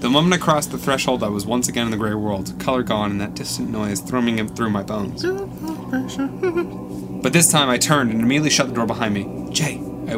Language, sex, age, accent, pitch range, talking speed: English, male, 20-39, American, 100-135 Hz, 230 wpm